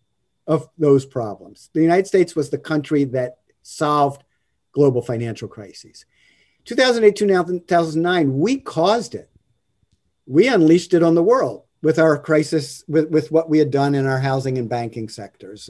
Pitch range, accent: 135-165 Hz, American